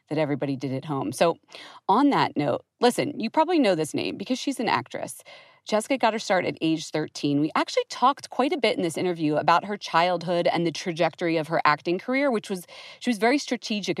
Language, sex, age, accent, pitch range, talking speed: English, female, 40-59, American, 160-230 Hz, 220 wpm